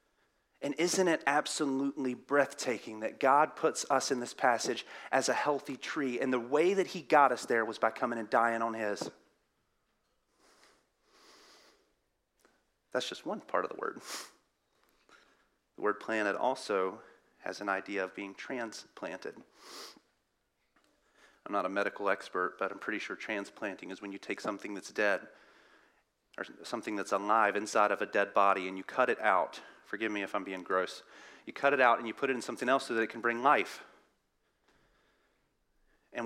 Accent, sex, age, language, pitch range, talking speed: American, male, 30-49, English, 115-185 Hz, 170 wpm